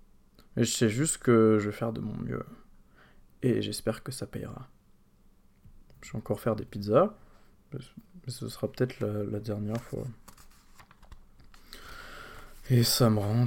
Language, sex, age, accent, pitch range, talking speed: French, male, 20-39, French, 105-130 Hz, 150 wpm